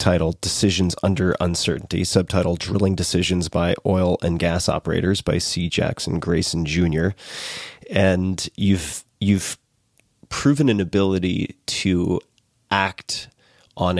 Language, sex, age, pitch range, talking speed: English, male, 30-49, 90-100 Hz, 110 wpm